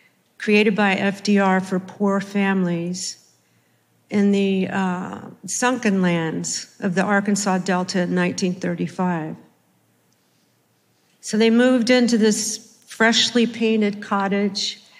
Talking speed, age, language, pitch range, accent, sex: 100 wpm, 50-69, Spanish, 175-220 Hz, American, female